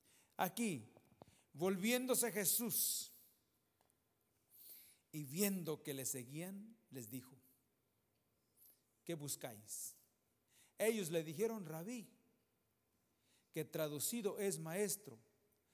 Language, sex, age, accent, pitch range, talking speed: English, male, 50-69, Mexican, 140-200 Hz, 75 wpm